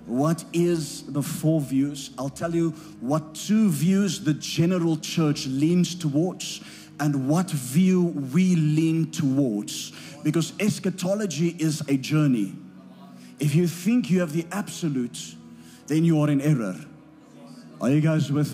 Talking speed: 140 wpm